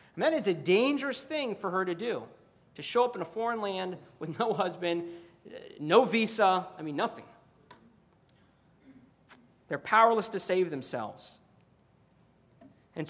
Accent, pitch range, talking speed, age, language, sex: American, 160-210 Hz, 140 wpm, 40-59, English, male